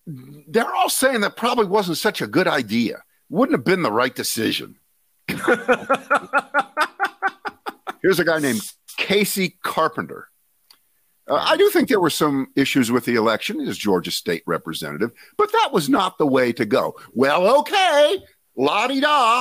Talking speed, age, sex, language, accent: 150 wpm, 50-69, male, English, American